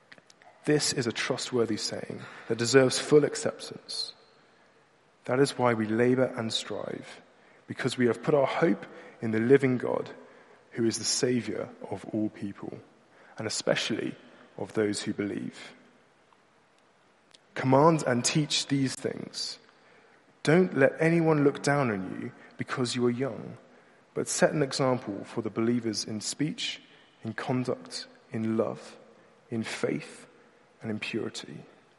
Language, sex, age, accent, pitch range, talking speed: English, male, 30-49, British, 110-145 Hz, 135 wpm